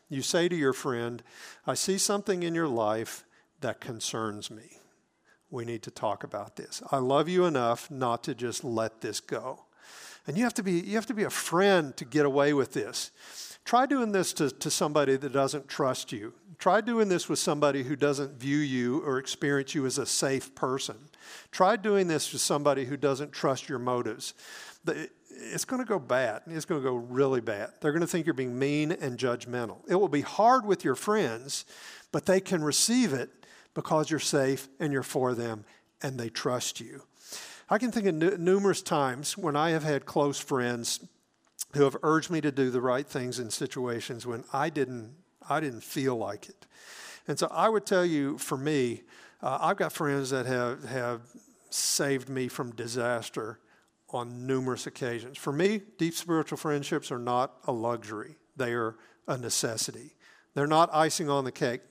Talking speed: 195 wpm